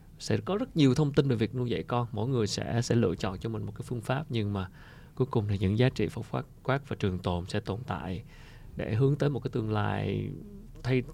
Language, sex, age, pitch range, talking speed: Vietnamese, male, 20-39, 100-120 Hz, 255 wpm